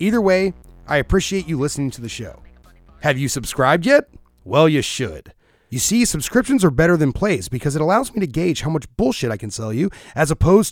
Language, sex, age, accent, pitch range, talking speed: English, male, 30-49, American, 130-195 Hz, 215 wpm